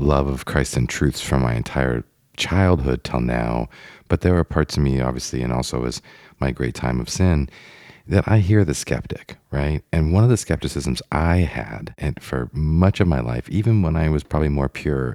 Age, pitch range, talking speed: 40-59, 65-85 Hz, 205 wpm